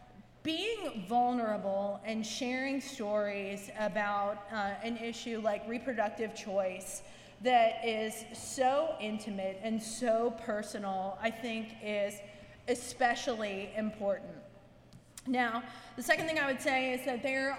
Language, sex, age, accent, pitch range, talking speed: English, female, 30-49, American, 220-275 Hz, 115 wpm